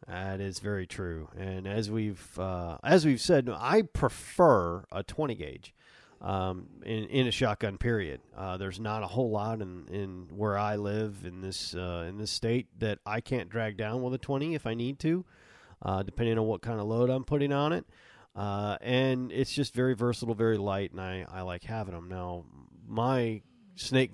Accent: American